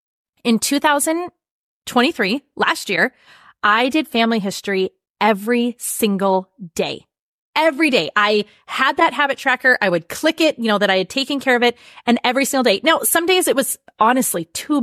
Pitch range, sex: 190-265 Hz, female